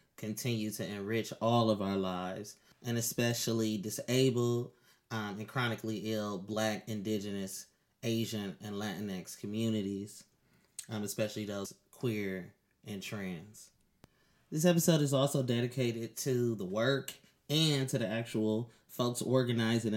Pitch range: 105-120 Hz